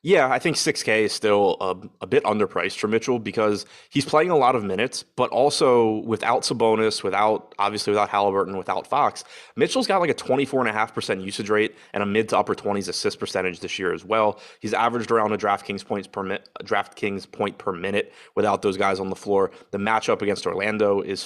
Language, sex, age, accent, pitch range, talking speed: English, male, 20-39, American, 100-125 Hz, 215 wpm